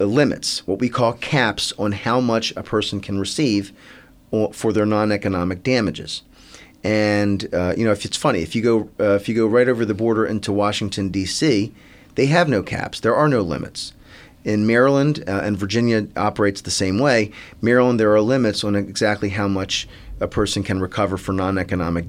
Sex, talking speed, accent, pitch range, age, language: male, 185 wpm, American, 95-110 Hz, 40-59, English